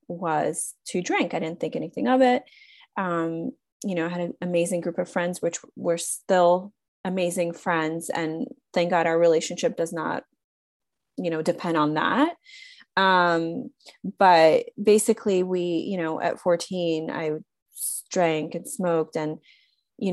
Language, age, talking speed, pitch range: English, 30-49, 150 wpm, 170-215 Hz